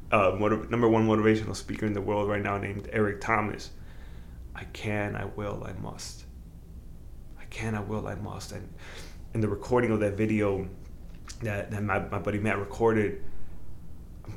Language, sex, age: English, male, 20-39